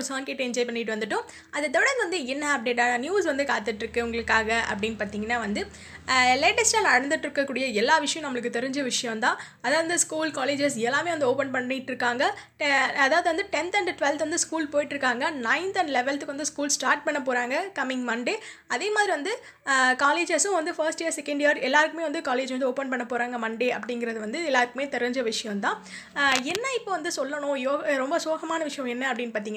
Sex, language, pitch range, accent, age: female, Tamil, 245-310 Hz, native, 20-39